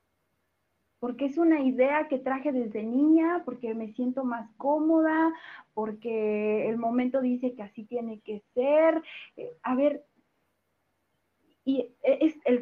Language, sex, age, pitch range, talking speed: Spanish, female, 30-49, 230-305 Hz, 125 wpm